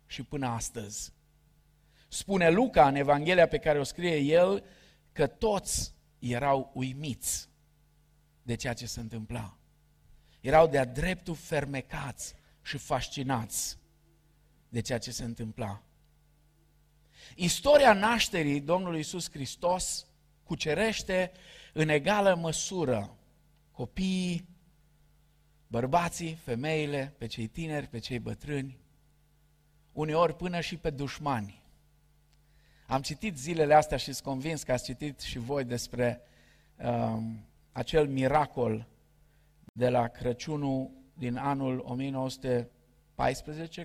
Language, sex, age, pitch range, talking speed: Romanian, male, 50-69, 125-155 Hz, 105 wpm